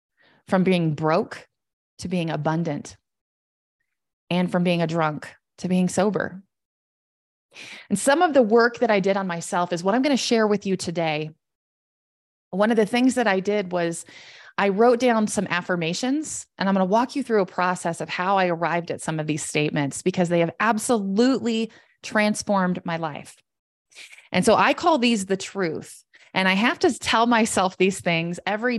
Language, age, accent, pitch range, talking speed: English, 20-39, American, 175-230 Hz, 180 wpm